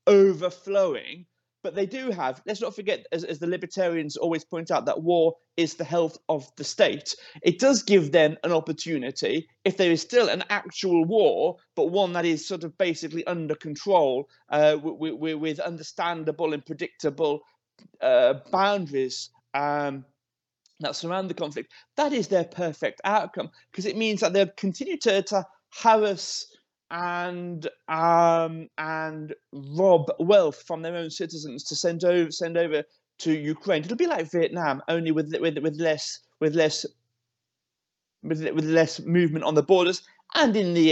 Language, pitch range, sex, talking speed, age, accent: English, 155-195 Hz, male, 160 wpm, 30-49, British